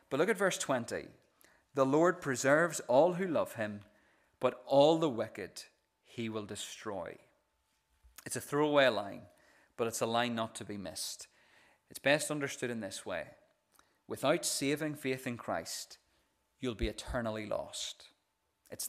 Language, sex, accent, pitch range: English, male, British, 110-150 Hz